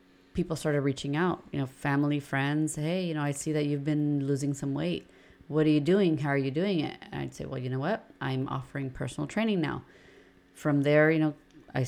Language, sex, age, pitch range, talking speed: English, female, 30-49, 140-160 Hz, 225 wpm